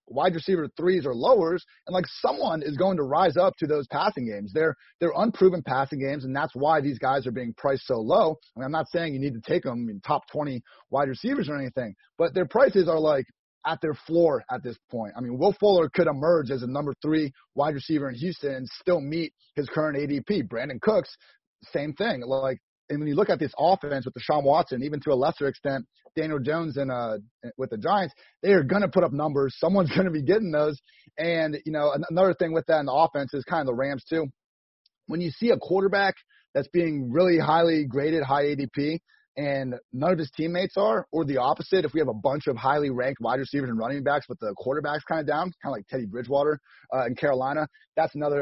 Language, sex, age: English, male, 30-49